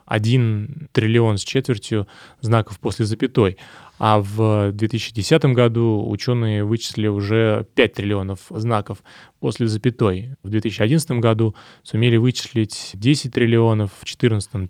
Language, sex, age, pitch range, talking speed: Russian, male, 20-39, 105-120 Hz, 115 wpm